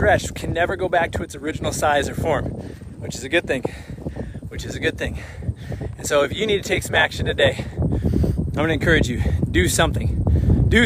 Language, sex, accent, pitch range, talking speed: English, male, American, 110-155 Hz, 205 wpm